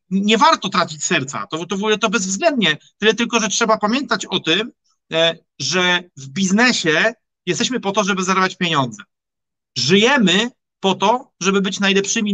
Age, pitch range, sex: 40-59, 160-200 Hz, male